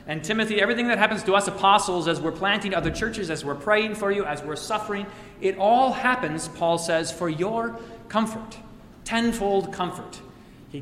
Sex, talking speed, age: male, 175 wpm, 30-49